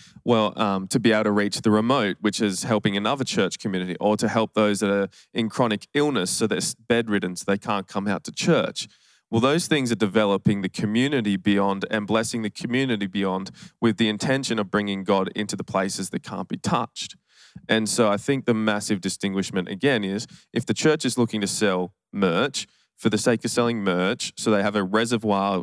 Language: English